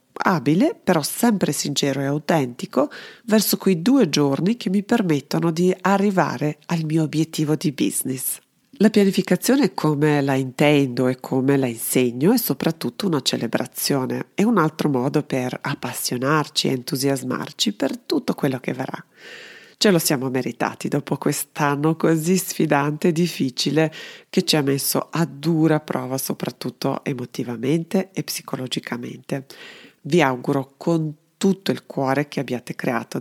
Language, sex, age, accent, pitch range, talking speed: Italian, female, 40-59, native, 135-190 Hz, 135 wpm